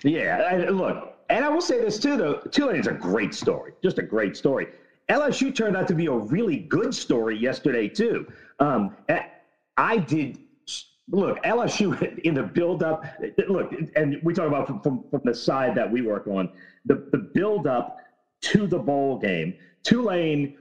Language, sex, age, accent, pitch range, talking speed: English, male, 40-59, American, 135-200 Hz, 170 wpm